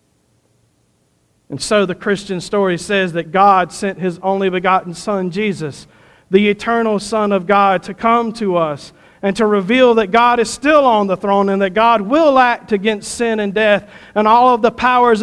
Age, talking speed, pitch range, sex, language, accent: 50-69, 185 wpm, 195-250 Hz, male, English, American